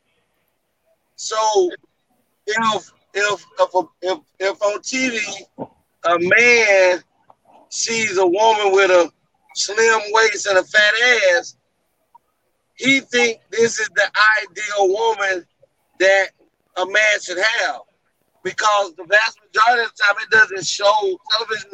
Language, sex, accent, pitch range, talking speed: English, male, American, 190-255 Hz, 120 wpm